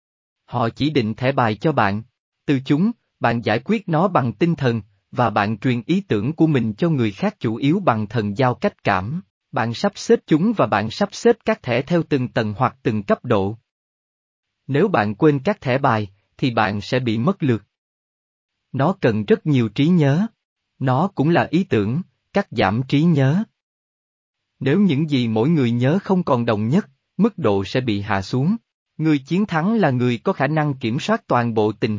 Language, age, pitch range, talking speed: Vietnamese, 20-39, 115-165 Hz, 200 wpm